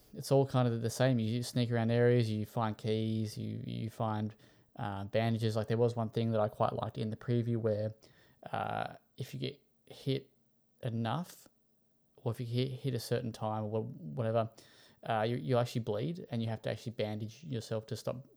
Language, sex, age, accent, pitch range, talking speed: English, male, 20-39, Australian, 110-125 Hz, 200 wpm